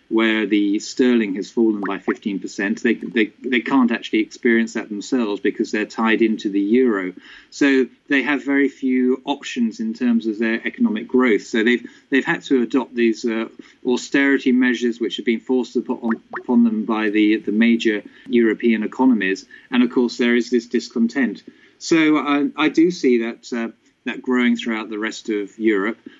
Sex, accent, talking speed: male, British, 180 wpm